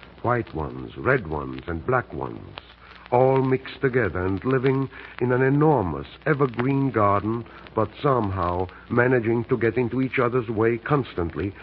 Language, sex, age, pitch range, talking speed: English, male, 60-79, 95-125 Hz, 140 wpm